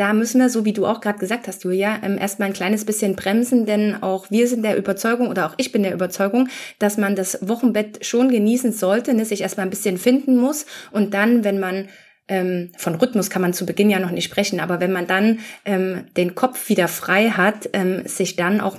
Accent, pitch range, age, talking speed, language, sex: German, 185-215 Hz, 20-39, 220 wpm, German, female